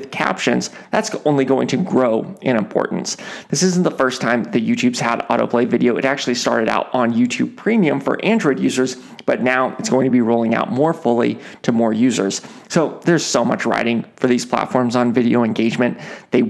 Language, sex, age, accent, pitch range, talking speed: English, male, 30-49, American, 125-160 Hz, 195 wpm